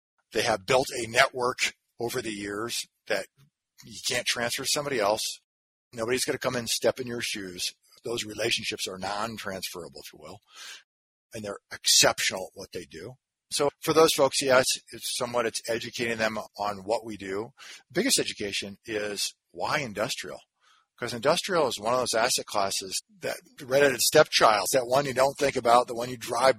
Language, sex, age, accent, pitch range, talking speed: English, male, 40-59, American, 105-130 Hz, 175 wpm